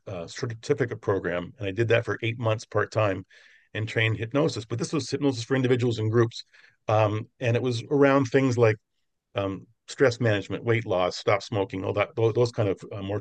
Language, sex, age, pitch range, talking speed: English, male, 40-59, 105-130 Hz, 200 wpm